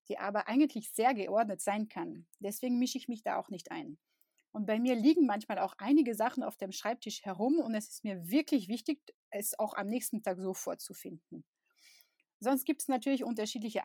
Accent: German